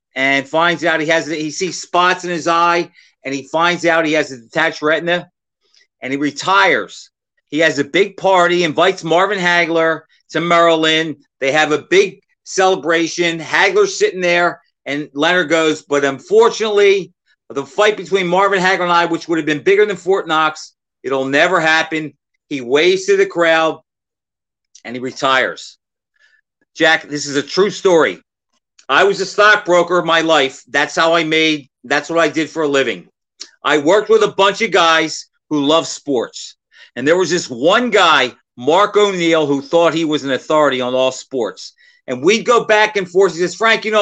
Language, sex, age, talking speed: English, male, 40-59, 185 wpm